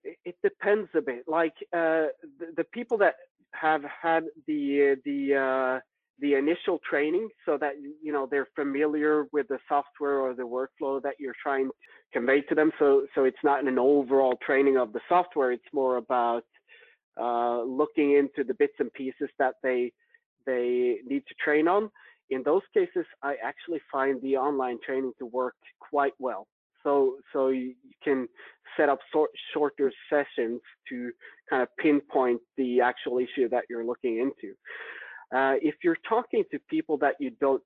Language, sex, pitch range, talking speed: English, male, 130-160 Hz, 170 wpm